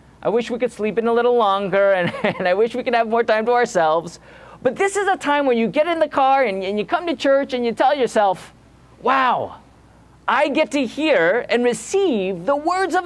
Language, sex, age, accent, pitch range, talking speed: English, male, 40-59, American, 185-270 Hz, 235 wpm